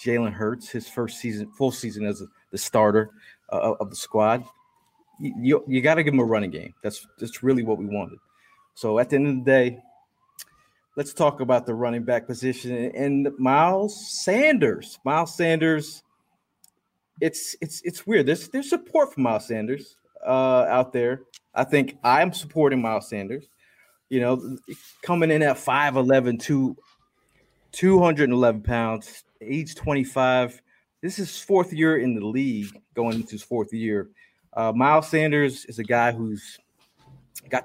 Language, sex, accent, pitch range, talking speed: English, male, American, 115-150 Hz, 160 wpm